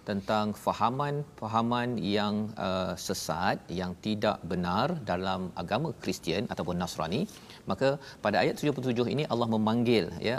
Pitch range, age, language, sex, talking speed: 105-125 Hz, 40-59, Malayalam, male, 120 wpm